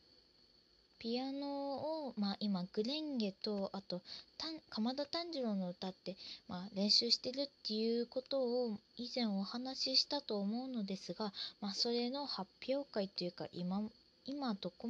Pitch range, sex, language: 185-245 Hz, female, Japanese